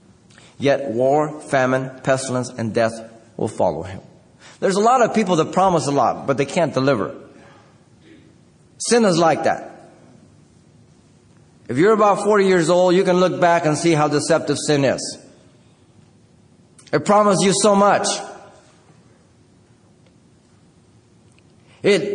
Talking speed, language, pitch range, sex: 130 wpm, English, 120-175 Hz, male